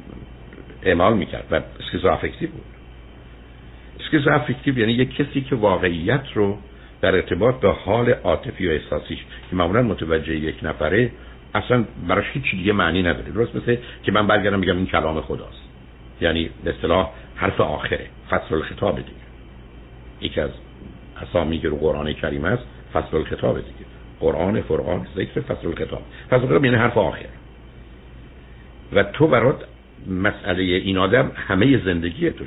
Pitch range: 65-105 Hz